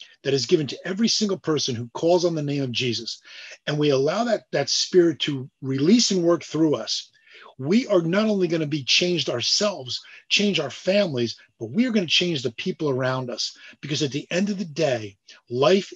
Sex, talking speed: male, 210 wpm